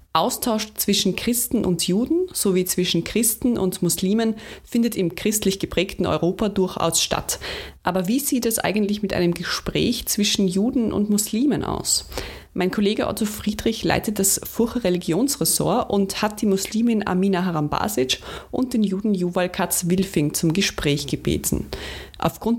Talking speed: 145 wpm